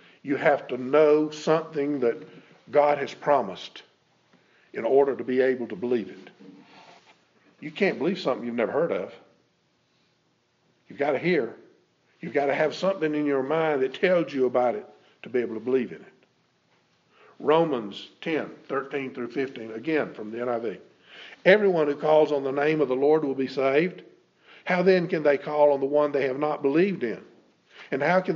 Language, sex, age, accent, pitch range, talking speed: English, male, 50-69, American, 135-170 Hz, 180 wpm